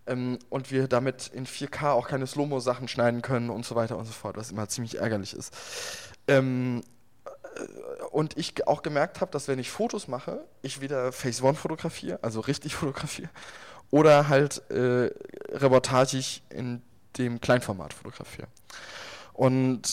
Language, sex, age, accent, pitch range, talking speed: German, male, 20-39, German, 125-150 Hz, 160 wpm